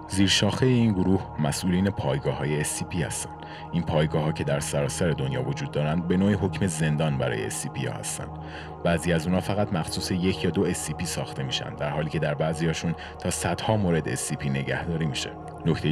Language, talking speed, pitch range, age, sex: Persian, 185 wpm, 75-90 Hz, 30-49, male